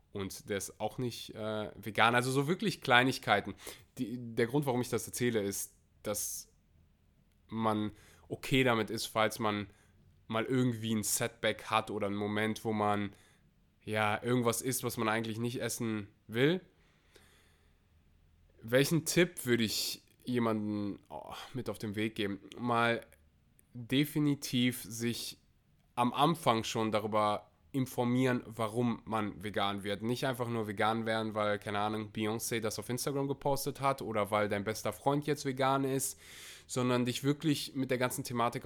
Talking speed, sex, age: 150 wpm, male, 20-39